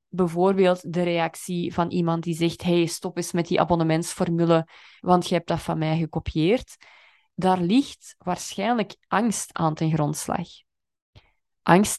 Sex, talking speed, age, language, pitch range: female, 140 wpm, 20-39, Dutch, 170-210 Hz